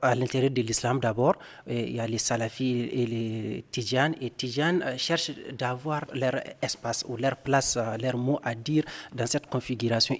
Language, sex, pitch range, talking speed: French, male, 120-135 Hz, 185 wpm